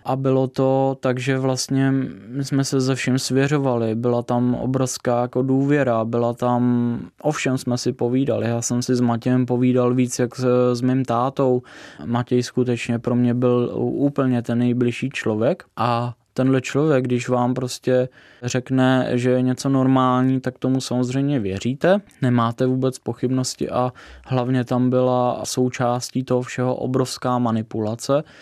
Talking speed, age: 150 wpm, 20-39